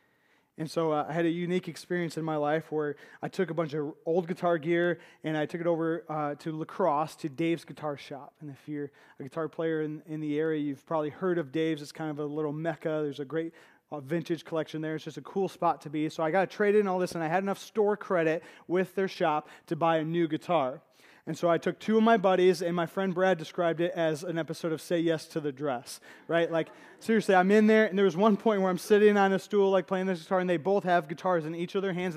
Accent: American